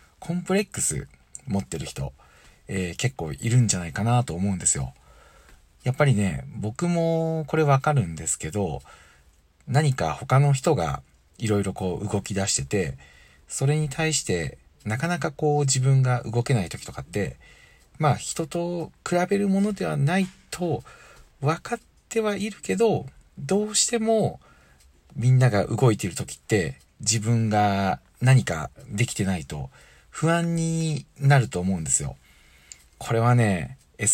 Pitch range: 95-145 Hz